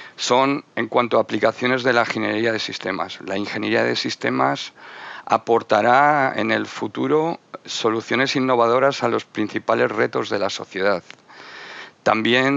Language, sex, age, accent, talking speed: Spanish, male, 50-69, Spanish, 135 wpm